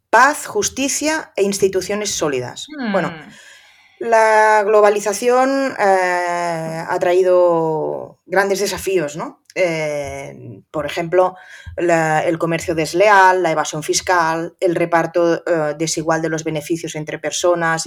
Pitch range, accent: 160-195 Hz, Spanish